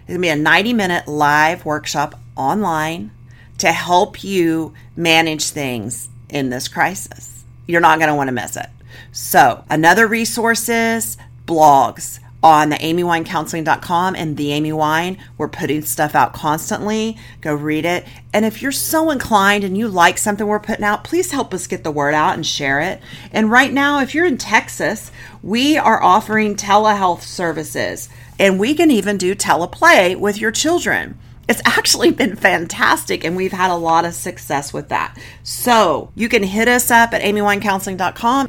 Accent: American